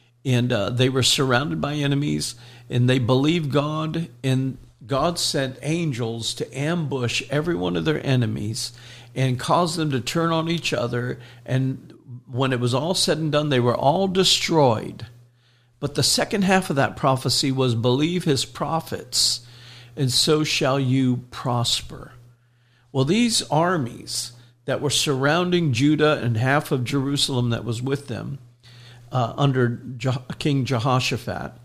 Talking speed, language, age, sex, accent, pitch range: 150 wpm, English, 50-69, male, American, 120-150 Hz